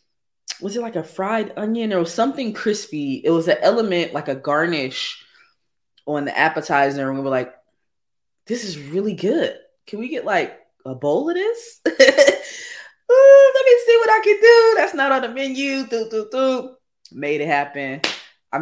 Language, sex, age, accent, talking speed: English, female, 20-39, American, 165 wpm